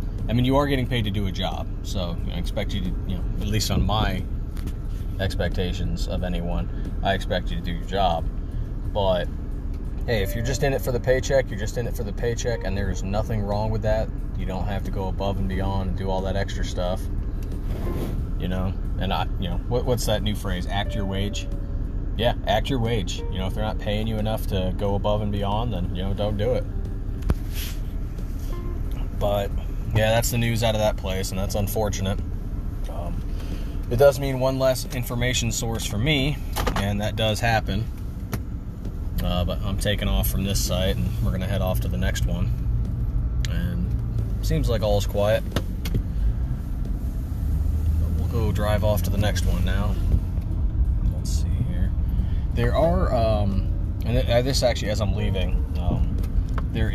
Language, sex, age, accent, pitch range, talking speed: English, male, 20-39, American, 90-105 Hz, 190 wpm